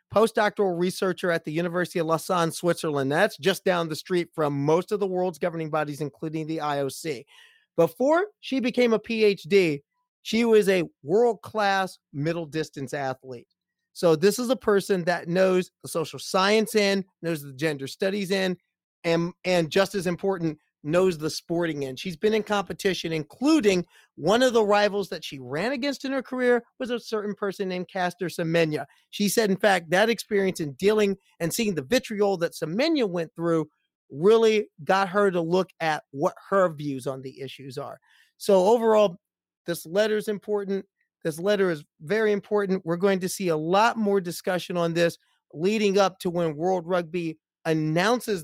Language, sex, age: English, male, 40-59